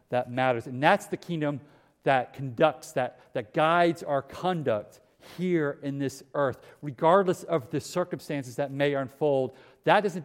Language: English